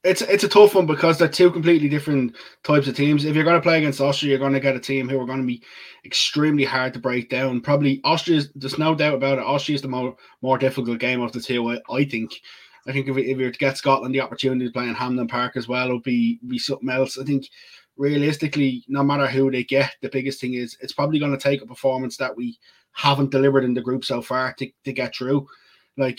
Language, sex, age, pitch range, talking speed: English, male, 20-39, 130-140 Hz, 255 wpm